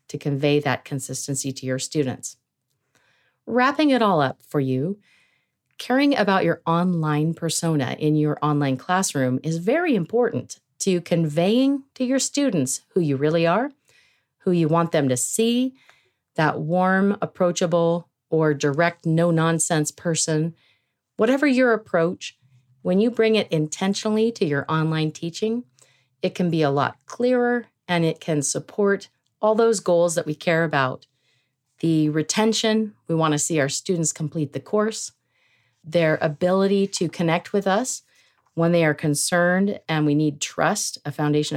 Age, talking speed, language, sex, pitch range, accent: 40-59, 150 wpm, English, female, 150-200 Hz, American